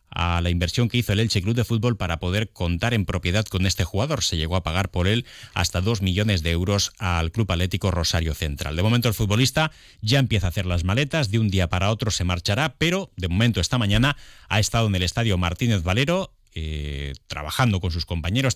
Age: 30-49